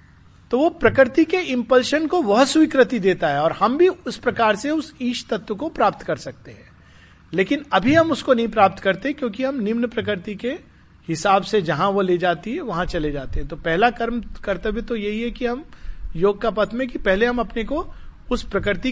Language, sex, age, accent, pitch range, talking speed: Hindi, male, 50-69, native, 140-225 Hz, 215 wpm